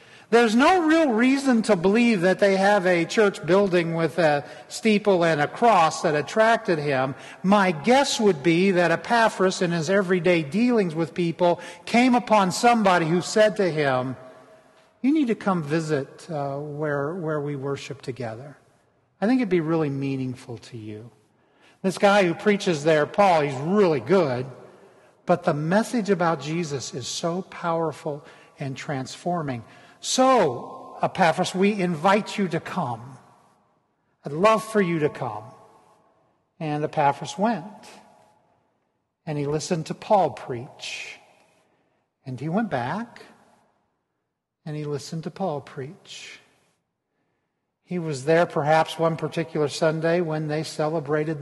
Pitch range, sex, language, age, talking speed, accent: 145-200 Hz, male, English, 50-69, 140 wpm, American